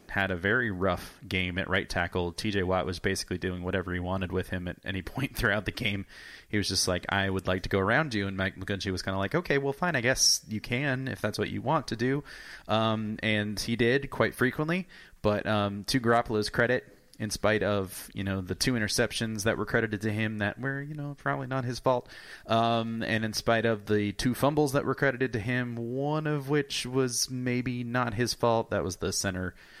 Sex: male